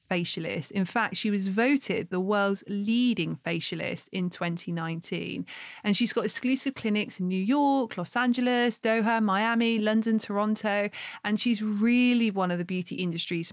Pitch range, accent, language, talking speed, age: 190-230 Hz, British, English, 150 wpm, 20-39